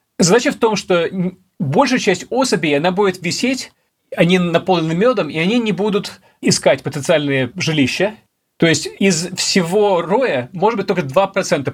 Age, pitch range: 30-49, 150-205 Hz